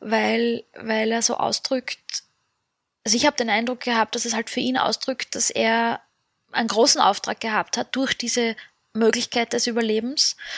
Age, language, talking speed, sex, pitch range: 20-39, German, 165 wpm, female, 230-255 Hz